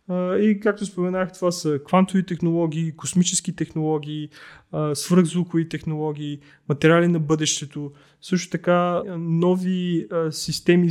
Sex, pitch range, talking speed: male, 160-195 Hz, 100 wpm